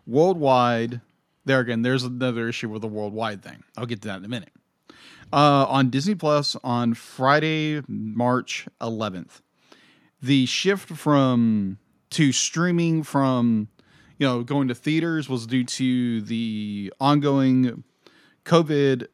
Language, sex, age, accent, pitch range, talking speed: English, male, 40-59, American, 115-145 Hz, 130 wpm